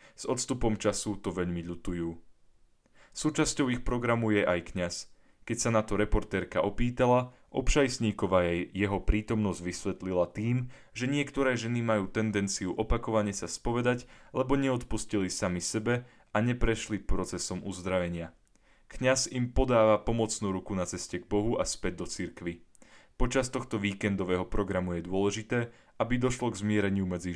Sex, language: male, Slovak